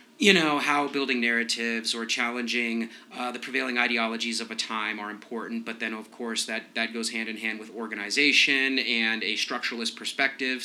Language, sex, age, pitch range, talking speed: English, male, 30-49, 105-125 Hz, 180 wpm